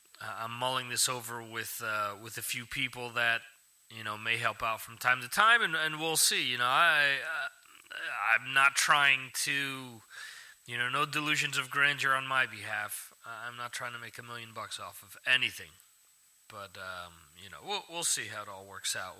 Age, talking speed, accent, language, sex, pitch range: 30-49, 200 wpm, American, English, male, 120-155 Hz